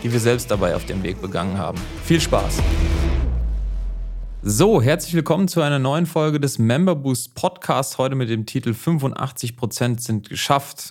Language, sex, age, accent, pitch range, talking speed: German, male, 30-49, German, 110-140 Hz, 160 wpm